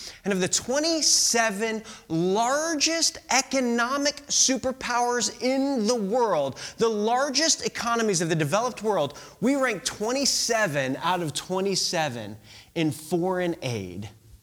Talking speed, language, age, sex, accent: 110 wpm, English, 30-49, male, American